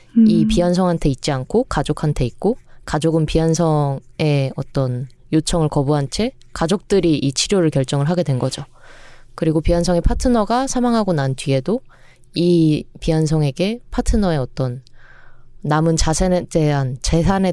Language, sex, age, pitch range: Korean, female, 20-39, 140-190 Hz